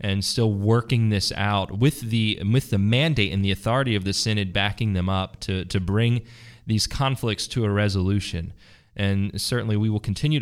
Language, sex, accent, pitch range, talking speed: English, male, American, 95-130 Hz, 185 wpm